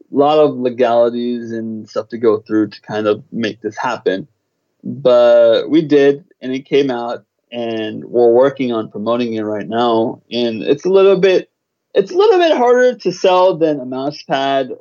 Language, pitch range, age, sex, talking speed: English, 115-140 Hz, 20-39, male, 185 wpm